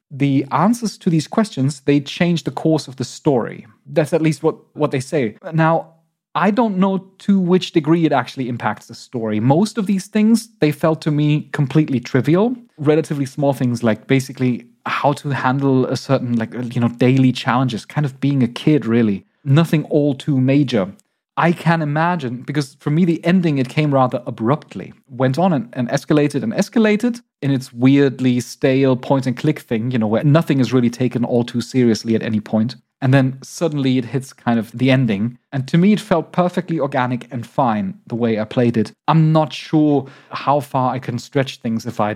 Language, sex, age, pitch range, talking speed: English, male, 30-49, 125-160 Hz, 200 wpm